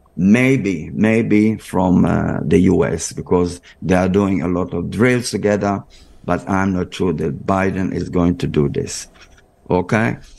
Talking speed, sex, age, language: 155 wpm, male, 50-69, English